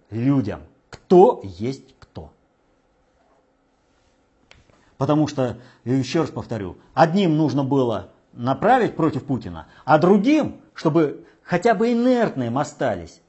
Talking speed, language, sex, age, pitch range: 100 wpm, Russian, male, 50-69, 105-170 Hz